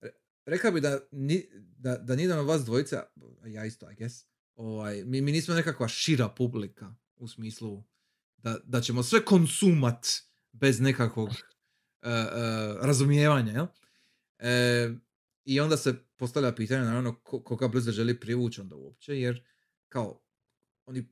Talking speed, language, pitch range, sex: 140 wpm, Croatian, 115-145 Hz, male